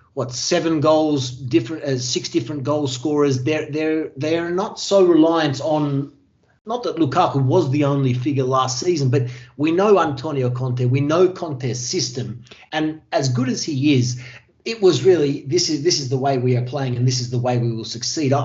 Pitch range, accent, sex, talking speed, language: 130-155 Hz, Australian, male, 195 wpm, English